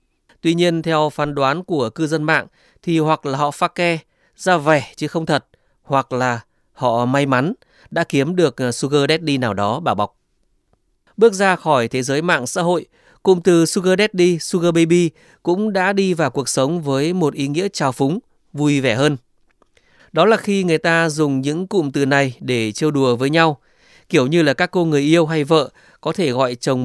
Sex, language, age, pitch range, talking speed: male, Vietnamese, 20-39, 135-170 Hz, 205 wpm